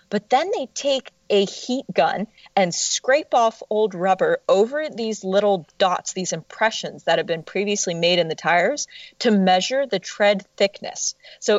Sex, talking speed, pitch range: female, 165 wpm, 185-255 Hz